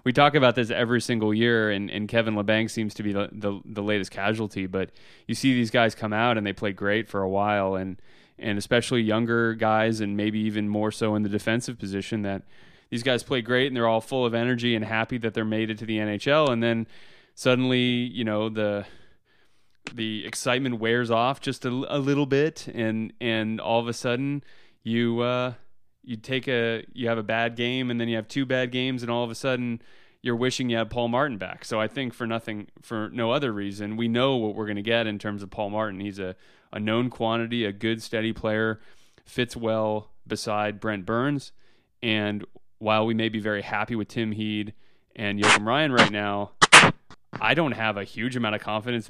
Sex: male